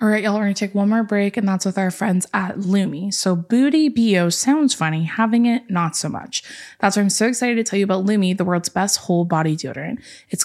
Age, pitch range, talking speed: 20-39, 175-215 Hz, 245 wpm